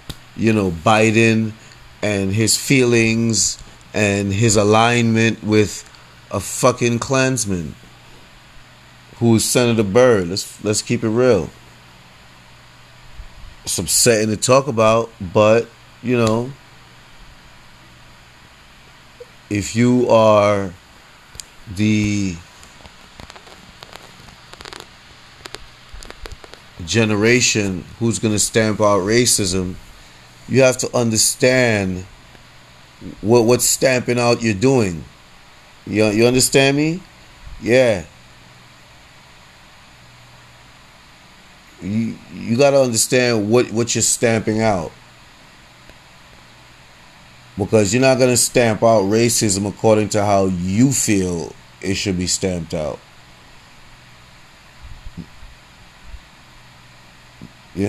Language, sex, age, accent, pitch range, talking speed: English, male, 30-49, American, 80-115 Hz, 85 wpm